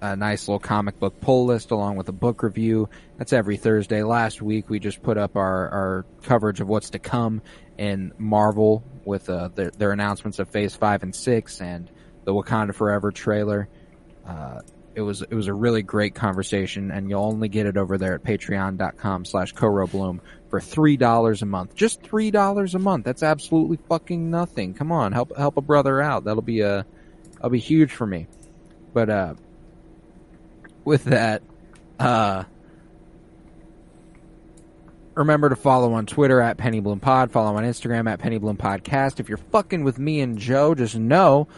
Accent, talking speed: American, 175 wpm